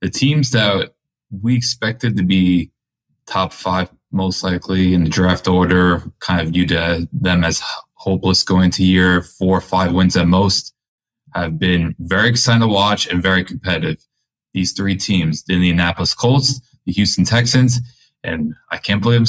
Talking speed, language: 165 wpm, English